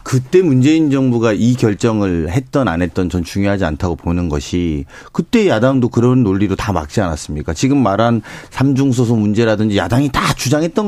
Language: Korean